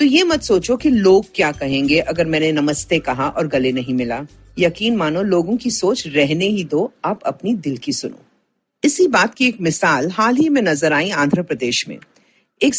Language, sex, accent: Hindi, female, native